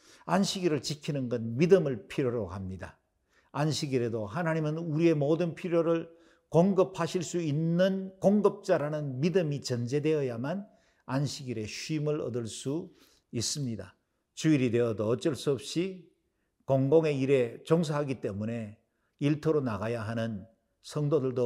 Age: 50-69